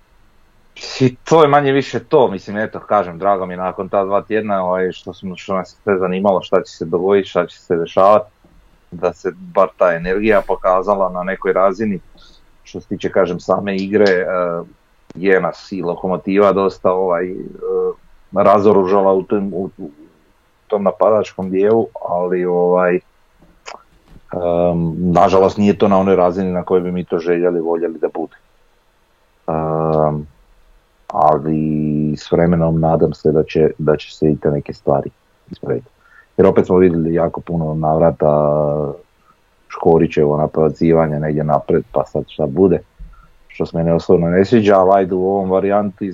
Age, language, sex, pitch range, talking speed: 30-49, Croatian, male, 80-95 Hz, 150 wpm